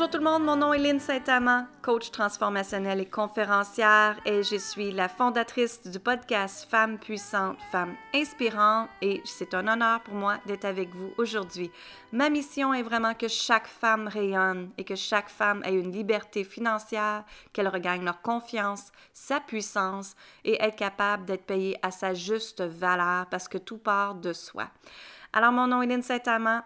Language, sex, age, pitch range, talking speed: French, female, 30-49, 195-235 Hz, 180 wpm